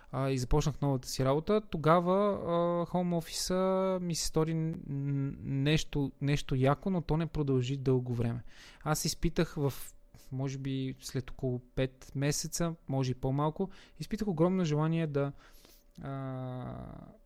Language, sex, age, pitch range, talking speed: Bulgarian, male, 20-39, 130-160 Hz, 130 wpm